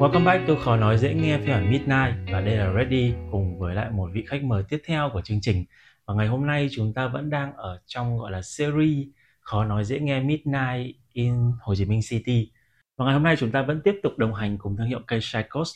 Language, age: Vietnamese, 20-39